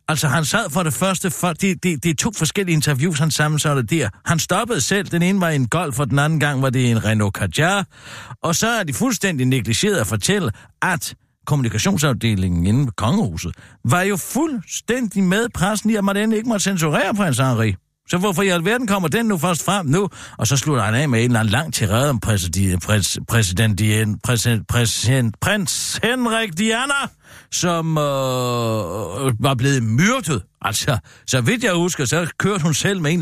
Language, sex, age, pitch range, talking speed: Danish, male, 60-79, 120-185 Hz, 195 wpm